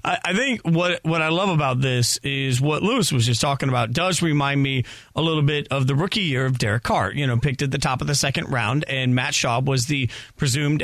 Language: English